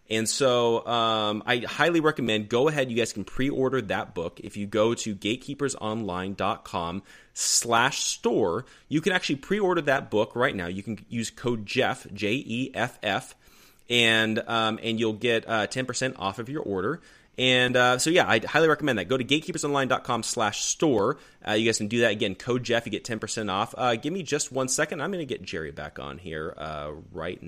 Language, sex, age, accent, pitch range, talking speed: English, male, 30-49, American, 105-135 Hz, 190 wpm